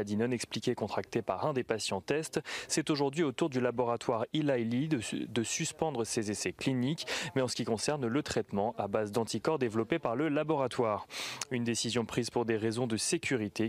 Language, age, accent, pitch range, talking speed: French, 30-49, French, 115-145 Hz, 185 wpm